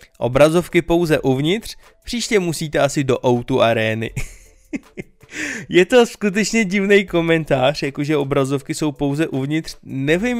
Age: 20-39